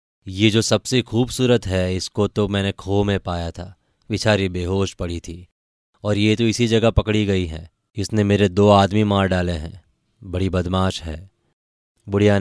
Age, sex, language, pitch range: 20-39, male, Hindi, 90-110 Hz